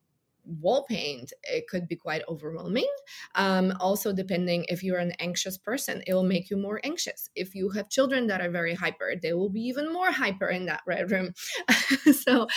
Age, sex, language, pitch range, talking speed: 20-39, female, English, 180-235 Hz, 190 wpm